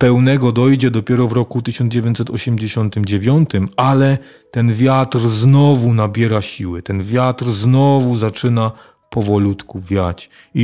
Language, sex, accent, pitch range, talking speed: Polish, male, native, 100-130 Hz, 105 wpm